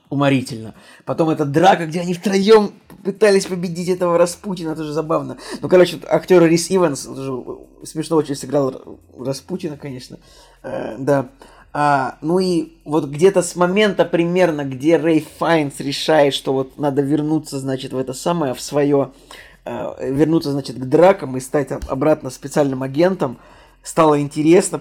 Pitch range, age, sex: 135-170 Hz, 20-39, male